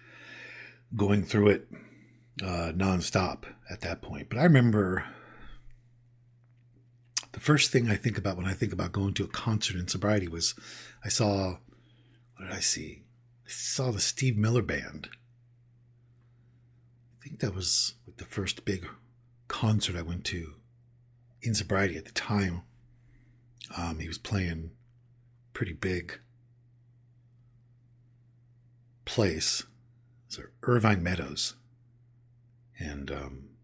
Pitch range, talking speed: 100-120 Hz, 120 wpm